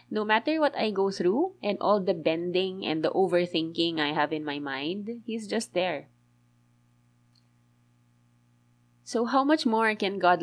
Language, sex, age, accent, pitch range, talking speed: English, female, 20-39, Filipino, 120-195 Hz, 155 wpm